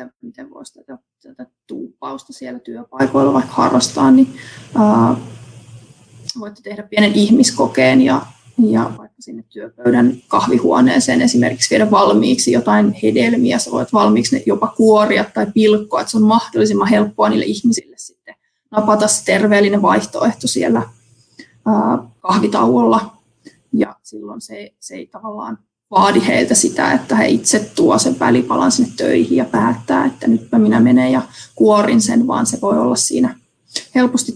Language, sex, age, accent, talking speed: Finnish, female, 30-49, native, 140 wpm